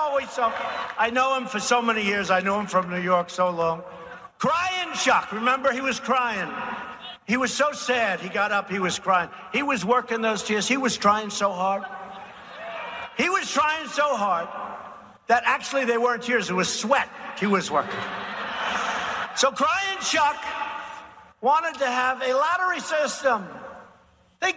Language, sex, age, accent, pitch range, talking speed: English, male, 50-69, American, 225-300 Hz, 165 wpm